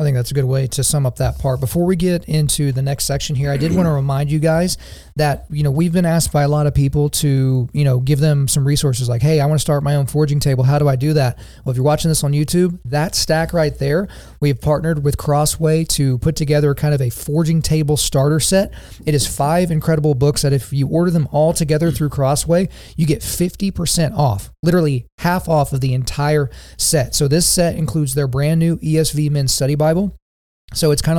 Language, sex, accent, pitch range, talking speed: English, male, American, 135-155 Hz, 235 wpm